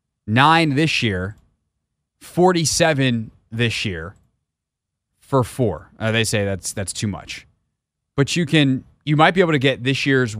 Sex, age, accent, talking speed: male, 30-49, American, 150 wpm